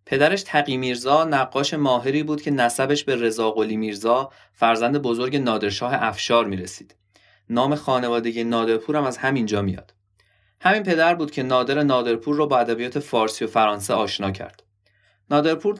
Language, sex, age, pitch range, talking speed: Persian, male, 20-39, 110-145 Hz, 150 wpm